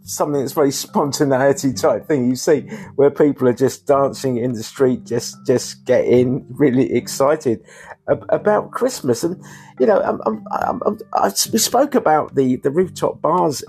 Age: 50-69